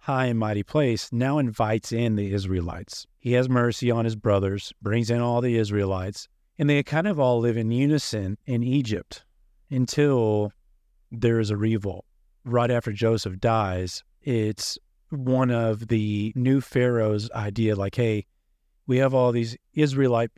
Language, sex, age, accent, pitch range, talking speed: English, male, 40-59, American, 105-125 Hz, 155 wpm